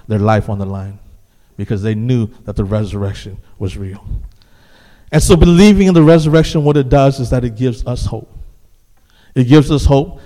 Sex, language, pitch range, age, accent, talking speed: male, English, 105-130 Hz, 50-69, American, 185 wpm